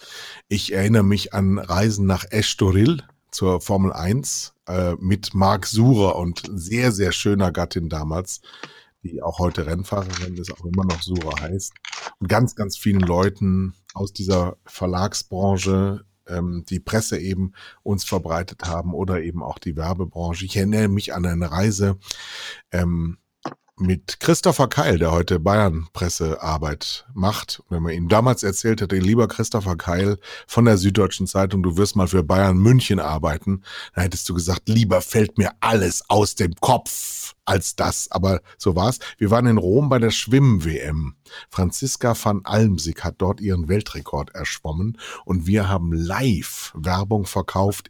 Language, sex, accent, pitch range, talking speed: German, male, German, 90-110 Hz, 155 wpm